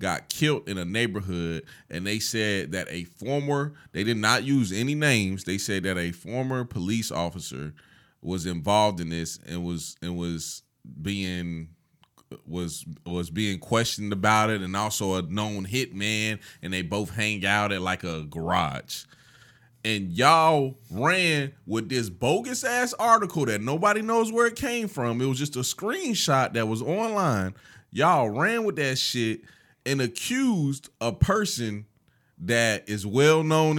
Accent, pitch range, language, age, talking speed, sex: American, 95-140 Hz, English, 20-39, 160 wpm, male